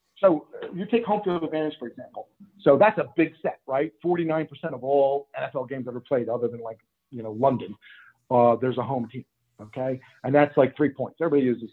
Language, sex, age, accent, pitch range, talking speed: English, male, 50-69, American, 145-220 Hz, 210 wpm